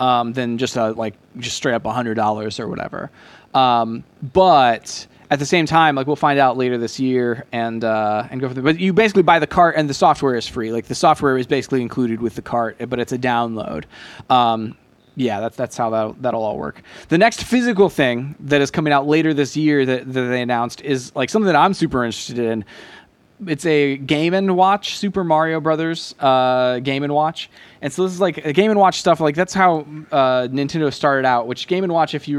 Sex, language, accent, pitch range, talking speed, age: male, English, American, 125-165 Hz, 225 wpm, 20-39